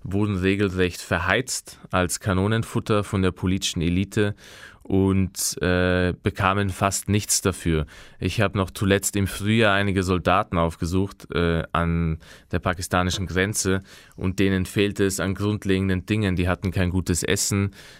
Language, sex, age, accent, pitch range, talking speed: German, male, 20-39, German, 90-100 Hz, 135 wpm